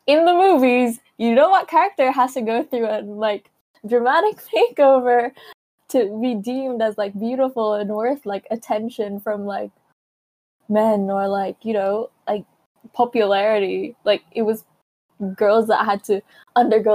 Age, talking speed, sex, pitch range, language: 10-29, 150 wpm, female, 195-235 Hz, English